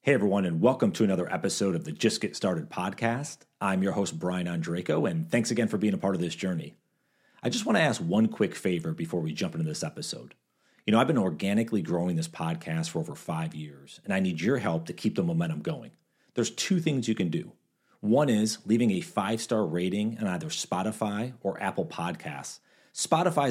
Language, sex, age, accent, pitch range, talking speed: English, male, 40-59, American, 90-140 Hz, 210 wpm